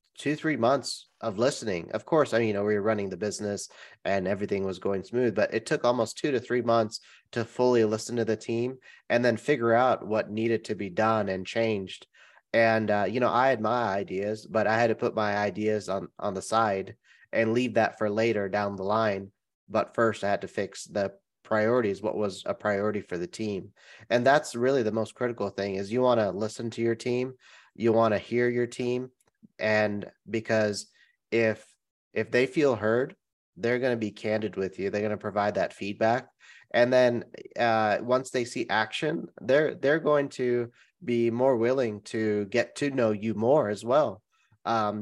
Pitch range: 105-120 Hz